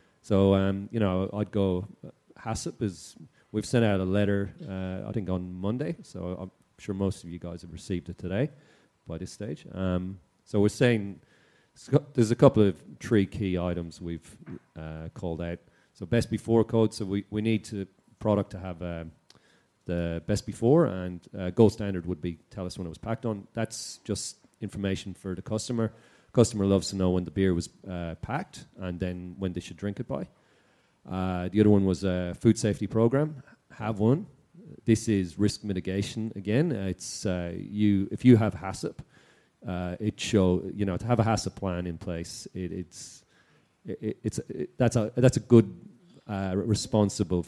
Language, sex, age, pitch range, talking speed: English, male, 30-49, 90-110 Hz, 185 wpm